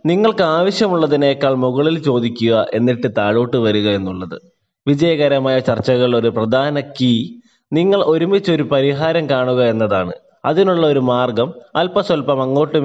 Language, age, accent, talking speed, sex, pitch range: Malayalam, 20-39, native, 105 wpm, male, 120-160 Hz